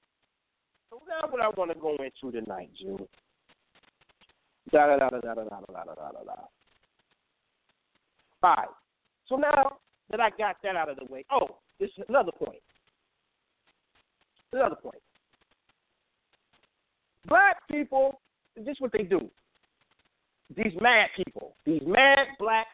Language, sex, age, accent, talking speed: English, male, 50-69, American, 115 wpm